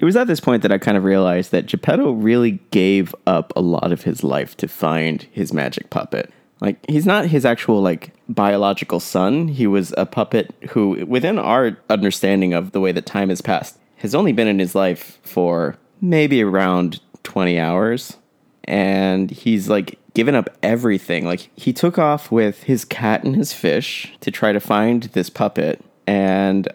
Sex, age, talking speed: male, 30-49, 185 wpm